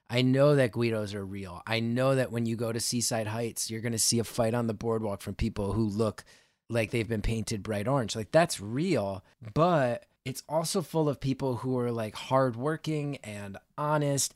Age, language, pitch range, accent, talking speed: 30-49, English, 110-135 Hz, American, 205 wpm